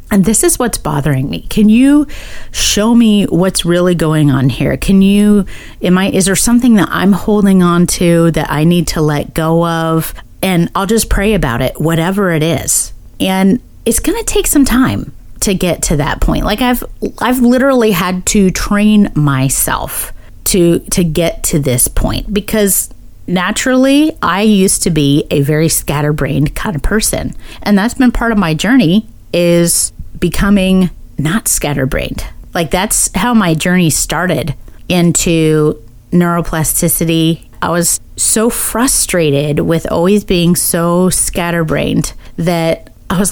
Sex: female